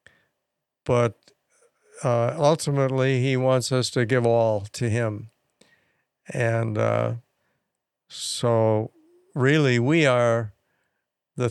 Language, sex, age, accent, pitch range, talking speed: English, male, 60-79, American, 110-130 Hz, 95 wpm